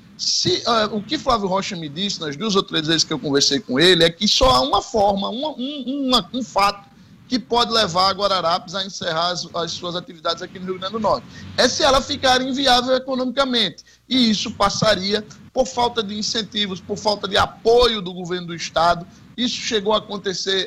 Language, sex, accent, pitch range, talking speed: Portuguese, male, Brazilian, 180-235 Hz, 205 wpm